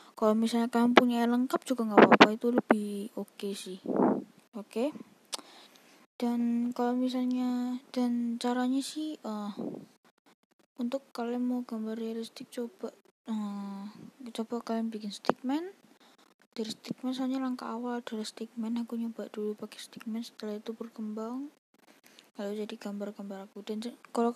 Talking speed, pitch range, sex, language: 140 wpm, 215-250 Hz, female, Malay